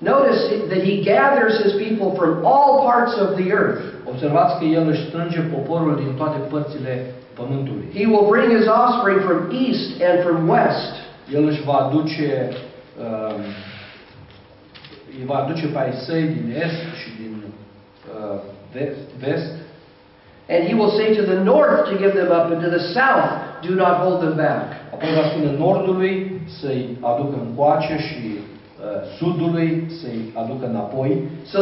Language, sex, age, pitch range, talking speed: Romanian, male, 50-69, 135-195 Hz, 130 wpm